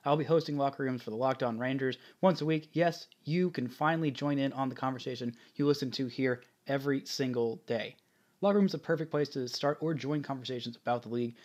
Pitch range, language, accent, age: 120-150 Hz, English, American, 20-39